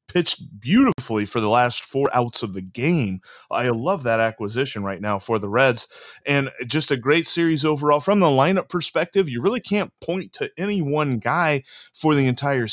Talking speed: 190 wpm